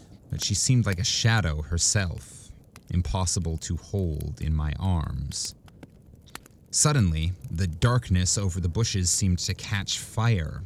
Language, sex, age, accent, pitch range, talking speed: English, male, 30-49, American, 85-105 Hz, 130 wpm